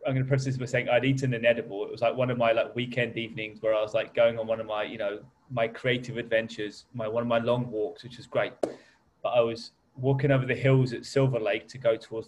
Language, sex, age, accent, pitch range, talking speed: English, male, 20-39, British, 115-140 Hz, 270 wpm